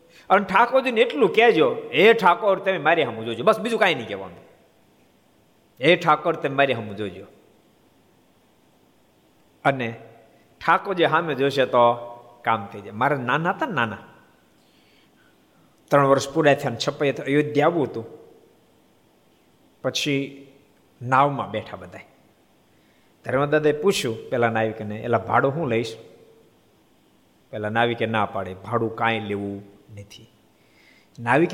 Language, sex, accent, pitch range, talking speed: Gujarati, male, native, 110-150 Hz, 110 wpm